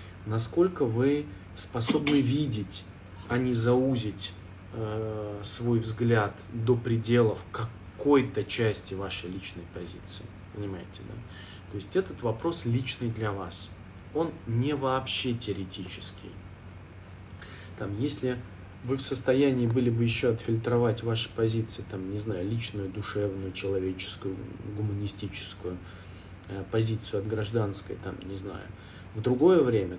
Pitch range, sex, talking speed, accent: 95-120 Hz, male, 115 wpm, native